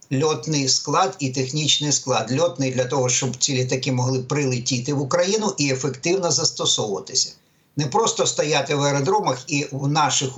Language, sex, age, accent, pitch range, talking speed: Ukrainian, male, 50-69, native, 130-155 Hz, 150 wpm